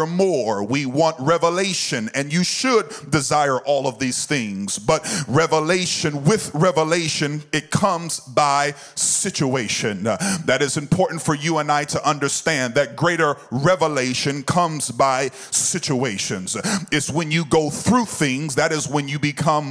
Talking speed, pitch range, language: 140 wpm, 150-185 Hz, English